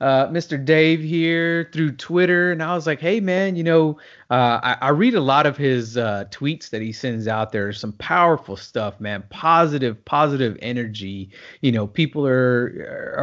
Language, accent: English, American